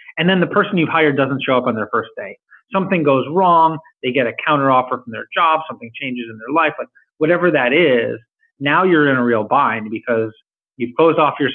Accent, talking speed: American, 225 wpm